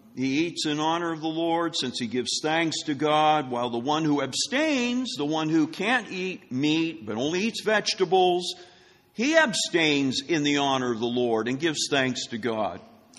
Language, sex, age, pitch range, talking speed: English, male, 50-69, 140-205 Hz, 185 wpm